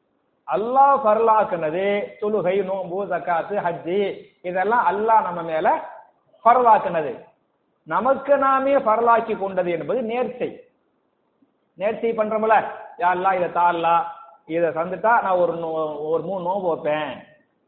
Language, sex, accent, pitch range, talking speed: English, male, Indian, 190-240 Hz, 105 wpm